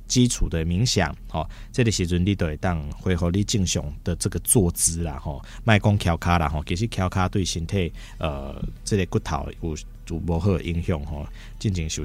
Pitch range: 85-110 Hz